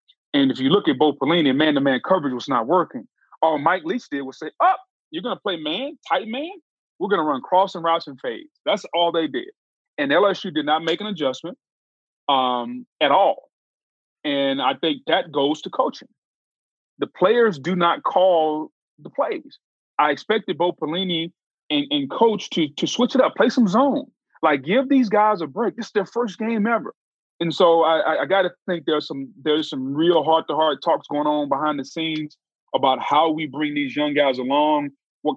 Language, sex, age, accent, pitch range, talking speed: English, male, 30-49, American, 150-225 Hz, 200 wpm